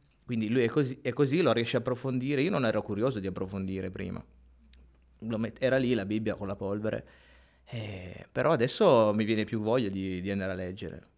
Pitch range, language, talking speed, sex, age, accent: 105-130 Hz, Italian, 195 wpm, male, 20-39, native